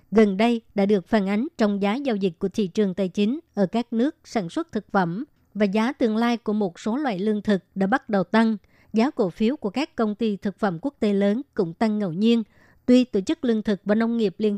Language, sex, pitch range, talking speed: Vietnamese, male, 205-230 Hz, 250 wpm